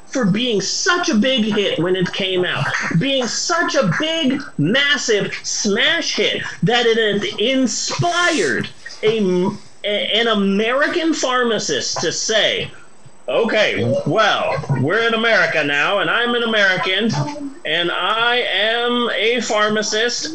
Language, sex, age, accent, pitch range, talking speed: English, male, 30-49, American, 185-295 Hz, 120 wpm